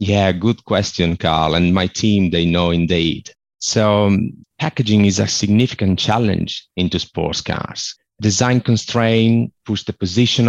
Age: 30-49